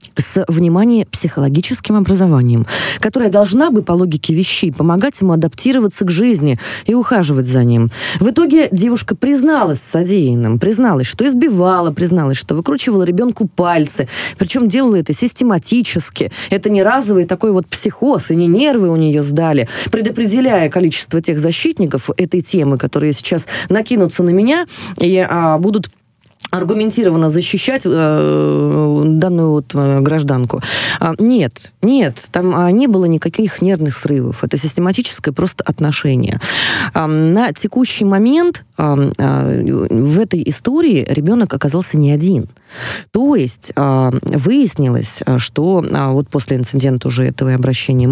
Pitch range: 145-205 Hz